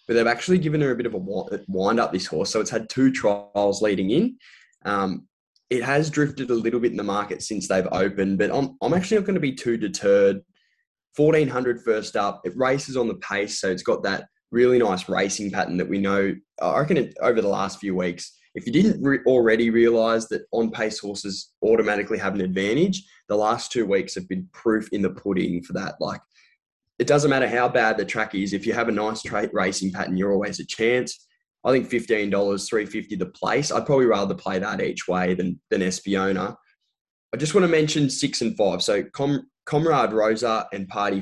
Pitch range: 95-130 Hz